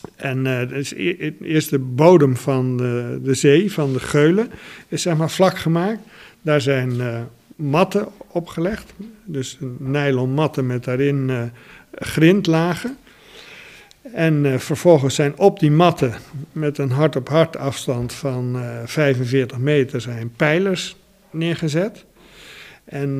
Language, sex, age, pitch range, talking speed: Dutch, male, 50-69, 130-170 Hz, 130 wpm